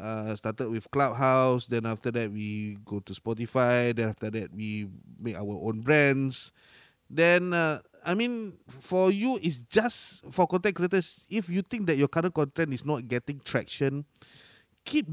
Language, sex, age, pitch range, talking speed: Malay, male, 20-39, 120-175 Hz, 165 wpm